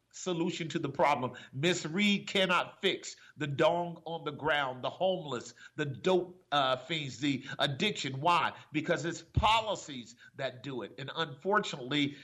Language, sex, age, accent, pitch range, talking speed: English, male, 50-69, American, 135-175 Hz, 145 wpm